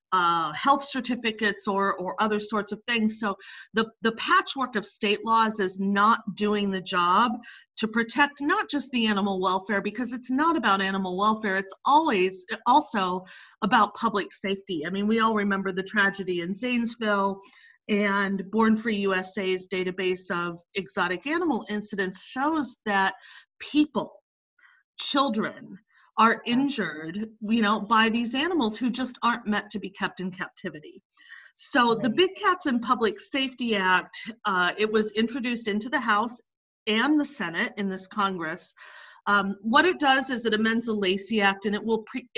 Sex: female